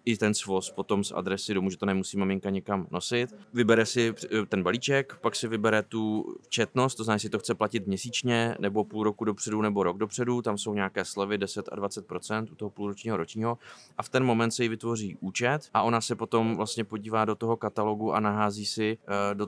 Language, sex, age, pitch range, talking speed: Czech, male, 20-39, 100-110 Hz, 210 wpm